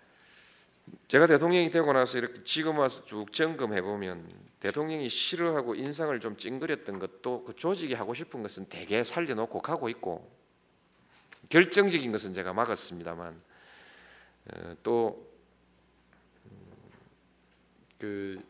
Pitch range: 95-150 Hz